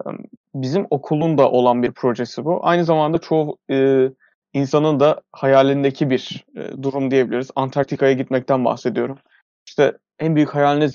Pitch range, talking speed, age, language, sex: 130-155 Hz, 135 wpm, 30-49, Turkish, male